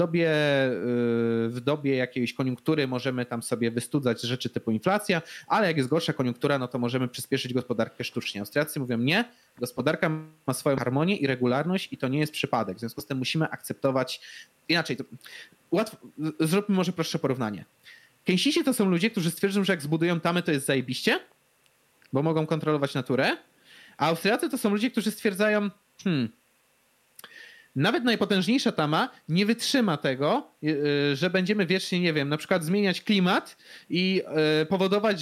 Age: 30-49